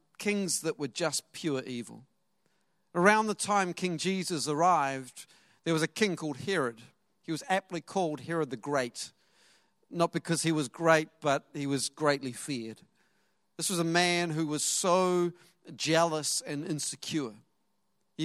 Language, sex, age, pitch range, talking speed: English, male, 50-69, 145-185 Hz, 150 wpm